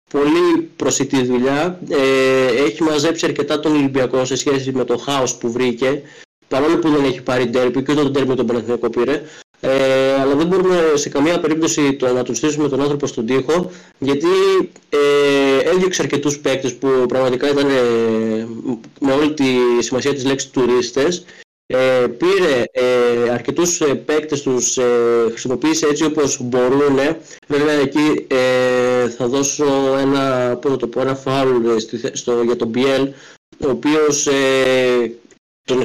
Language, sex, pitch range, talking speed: Greek, male, 125-150 Hz, 145 wpm